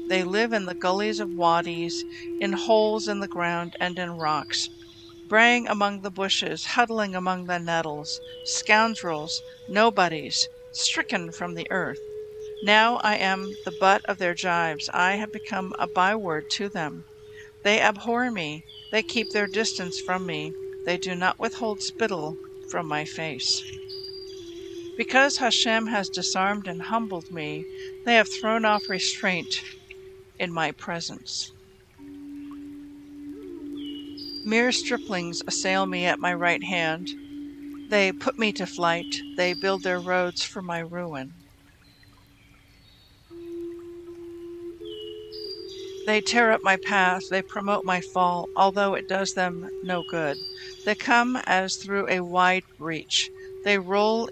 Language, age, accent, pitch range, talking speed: English, 50-69, American, 180-290 Hz, 135 wpm